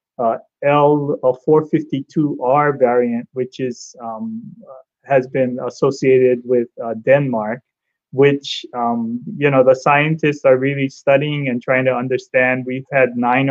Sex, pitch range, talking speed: male, 125-145 Hz, 130 wpm